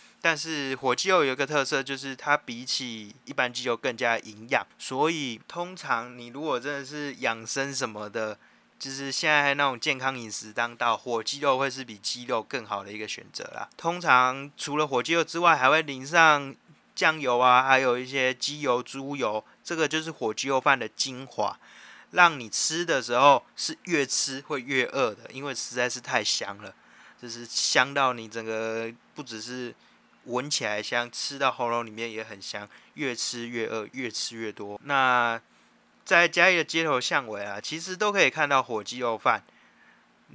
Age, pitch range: 20-39, 115-140 Hz